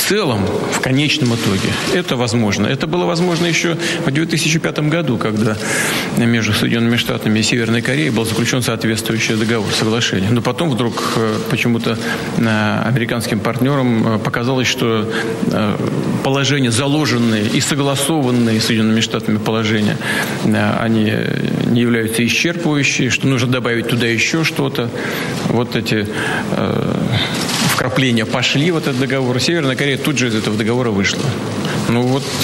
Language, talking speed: Russian, 125 wpm